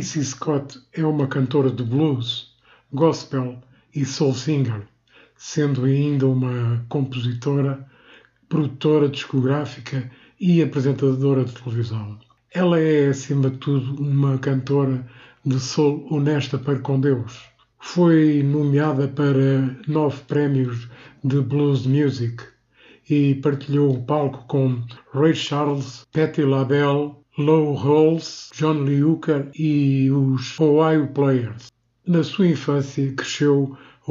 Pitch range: 130-150 Hz